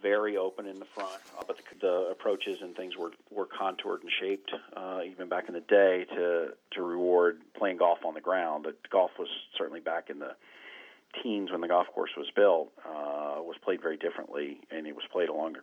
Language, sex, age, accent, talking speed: English, male, 40-59, American, 210 wpm